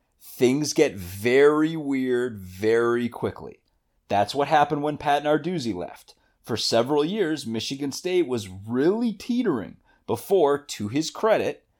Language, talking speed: English, 125 wpm